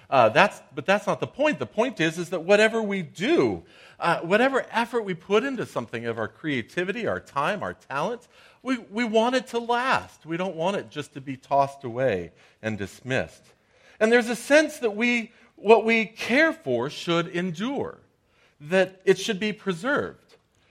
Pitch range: 125-195 Hz